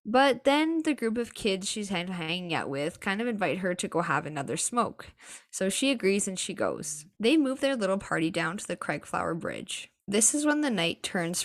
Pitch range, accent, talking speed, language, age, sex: 175-235 Hz, American, 215 wpm, English, 10-29, female